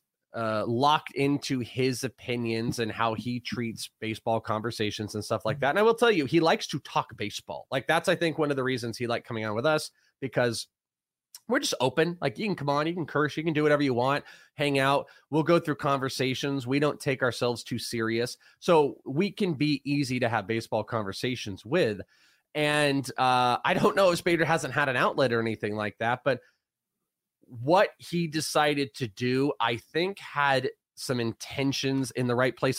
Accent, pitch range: American, 120-150 Hz